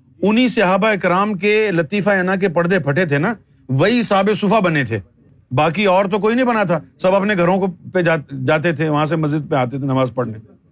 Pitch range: 140-210 Hz